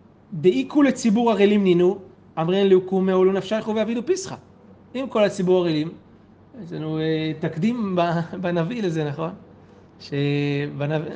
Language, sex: Hebrew, male